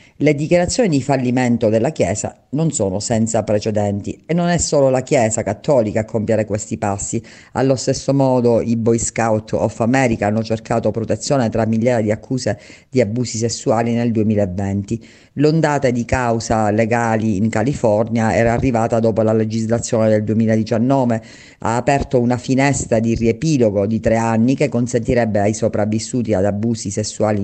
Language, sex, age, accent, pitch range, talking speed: Italian, female, 50-69, native, 105-130 Hz, 155 wpm